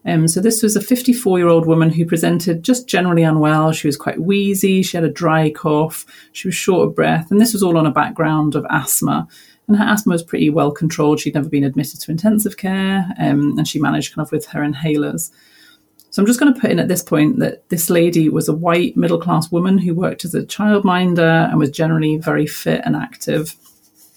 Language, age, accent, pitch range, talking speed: English, 30-49, British, 155-190 Hz, 220 wpm